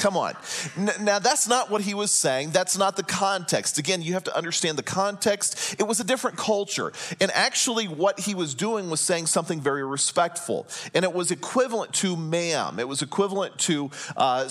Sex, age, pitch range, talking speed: male, 40-59, 160-220 Hz, 195 wpm